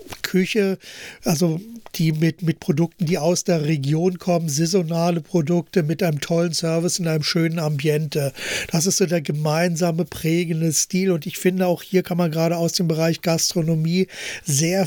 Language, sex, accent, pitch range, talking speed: German, male, German, 160-180 Hz, 165 wpm